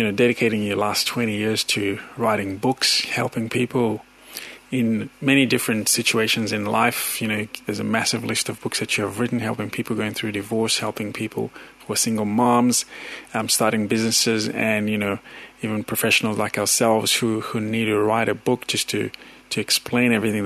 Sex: male